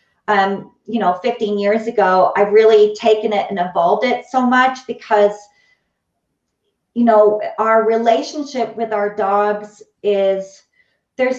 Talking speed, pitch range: 130 wpm, 200-230 Hz